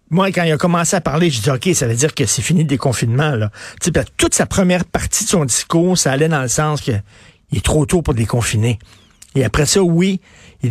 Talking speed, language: 235 wpm, French